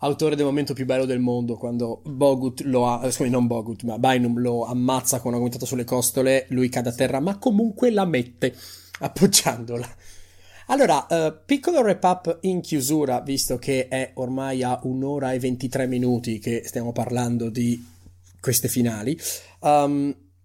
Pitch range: 115-140 Hz